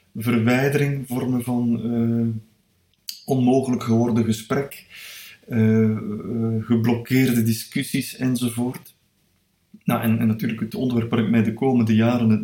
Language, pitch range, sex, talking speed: Dutch, 115-130 Hz, male, 120 wpm